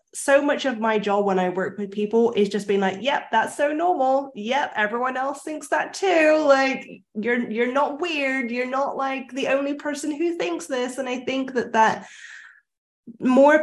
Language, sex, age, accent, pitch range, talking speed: English, female, 10-29, British, 195-240 Hz, 195 wpm